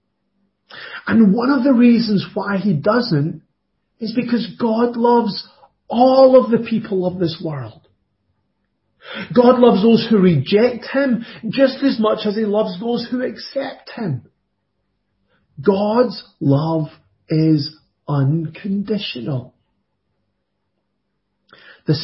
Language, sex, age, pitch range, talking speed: English, male, 40-59, 145-220 Hz, 110 wpm